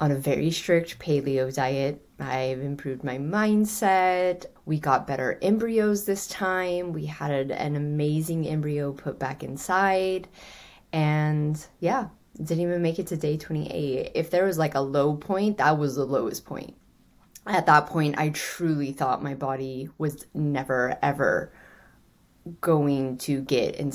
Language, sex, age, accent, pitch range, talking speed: English, female, 20-39, American, 135-165 Hz, 150 wpm